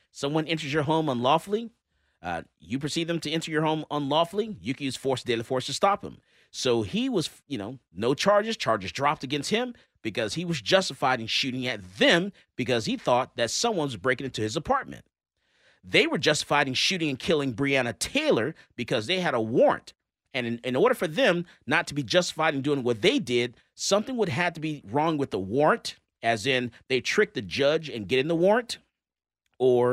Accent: American